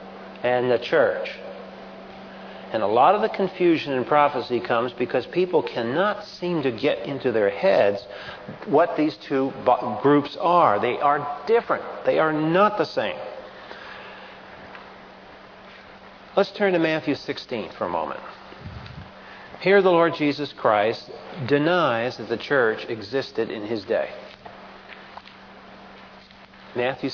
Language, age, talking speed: English, 50-69, 125 wpm